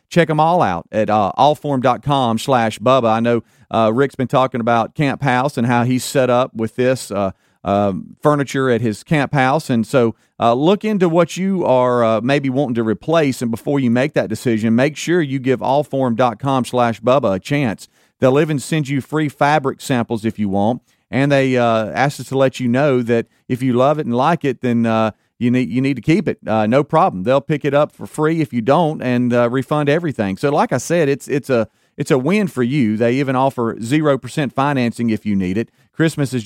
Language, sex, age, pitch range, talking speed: English, male, 40-59, 115-145 Hz, 225 wpm